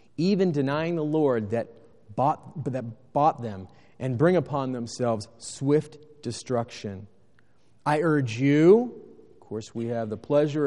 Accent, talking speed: American, 135 wpm